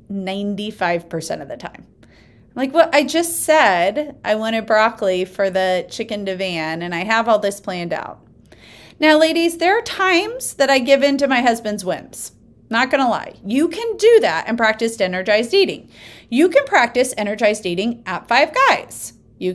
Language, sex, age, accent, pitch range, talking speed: English, female, 30-49, American, 210-305 Hz, 170 wpm